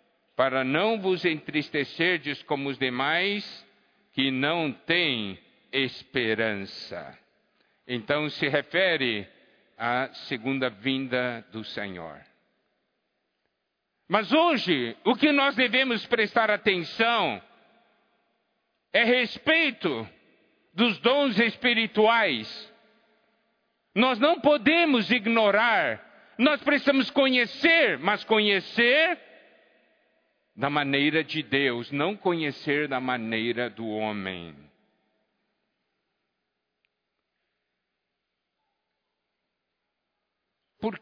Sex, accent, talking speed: male, Brazilian, 75 wpm